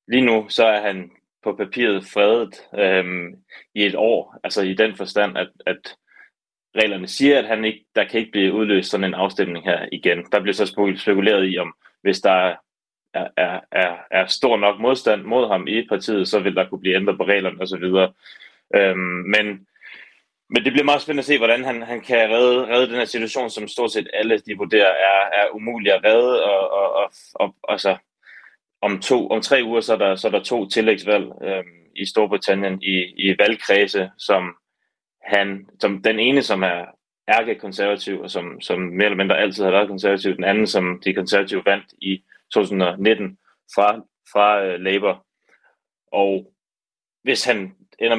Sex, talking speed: male, 180 wpm